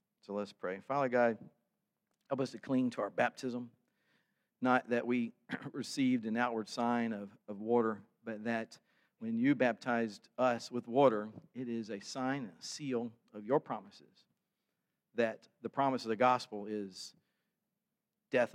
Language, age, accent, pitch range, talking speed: English, 50-69, American, 110-135 Hz, 155 wpm